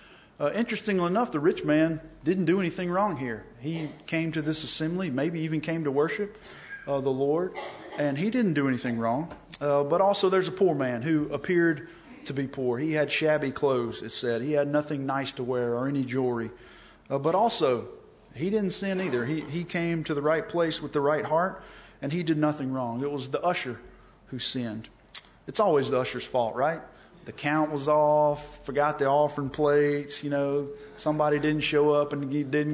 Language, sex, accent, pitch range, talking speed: English, male, American, 130-160 Hz, 200 wpm